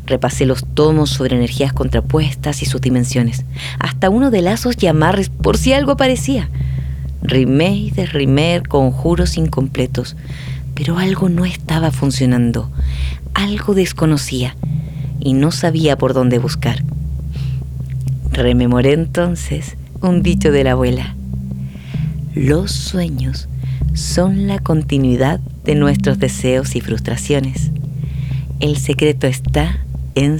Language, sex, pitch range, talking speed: Spanish, female, 130-170 Hz, 115 wpm